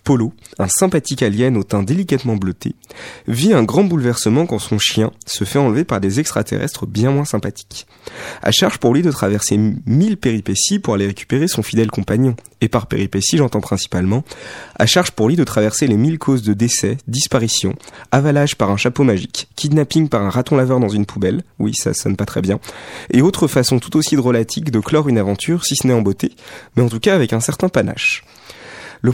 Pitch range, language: 105-140 Hz, French